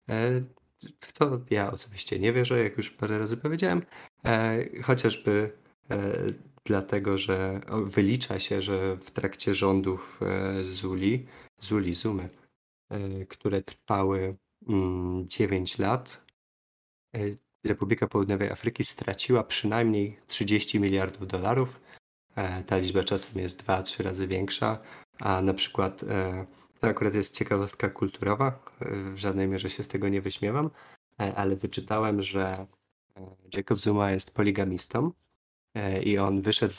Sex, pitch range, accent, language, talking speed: male, 95-110 Hz, native, Polish, 110 wpm